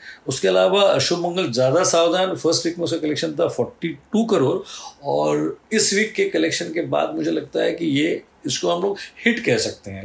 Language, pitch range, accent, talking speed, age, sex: Hindi, 135-195 Hz, native, 195 wpm, 50-69, male